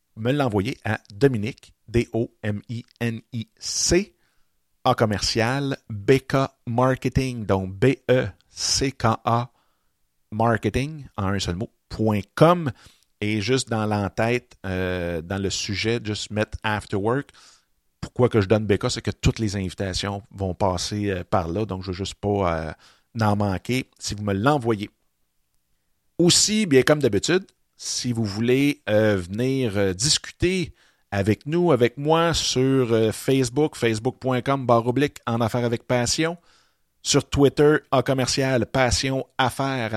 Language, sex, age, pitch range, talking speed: French, male, 50-69, 105-130 Hz, 135 wpm